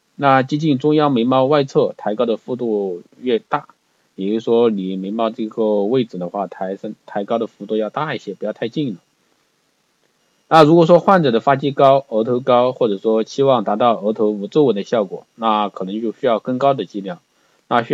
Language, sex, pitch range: Chinese, male, 105-130 Hz